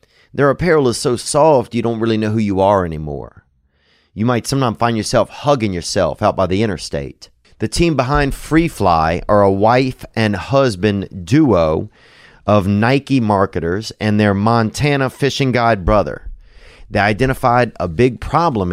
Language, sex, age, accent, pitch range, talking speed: English, male, 30-49, American, 100-135 Hz, 155 wpm